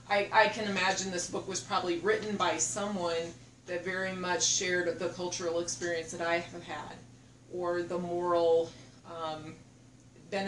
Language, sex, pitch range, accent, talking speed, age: English, female, 165-195 Hz, American, 150 wpm, 30-49